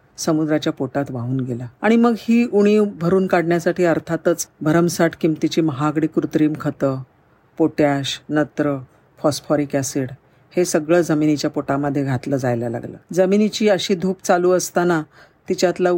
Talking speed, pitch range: 125 wpm, 140-180 Hz